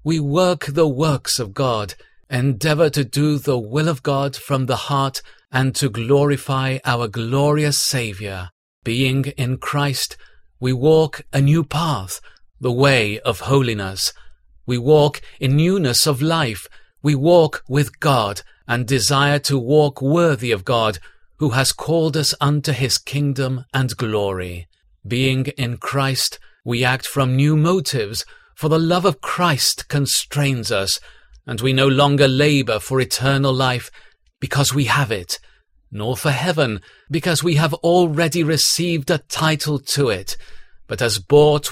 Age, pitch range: 40-59, 125-150 Hz